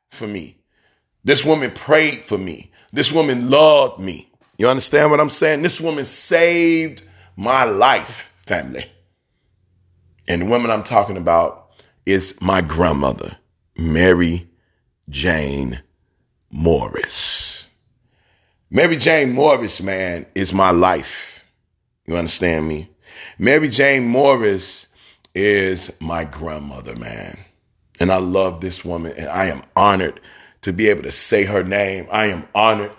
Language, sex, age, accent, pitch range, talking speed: English, male, 30-49, American, 85-120 Hz, 125 wpm